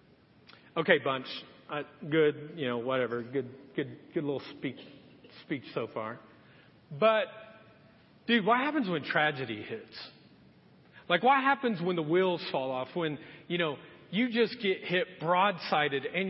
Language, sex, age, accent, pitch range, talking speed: English, male, 40-59, American, 185-270 Hz, 145 wpm